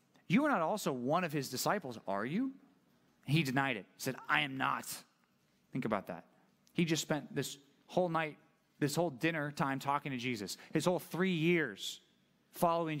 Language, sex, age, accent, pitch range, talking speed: English, male, 30-49, American, 140-175 Hz, 180 wpm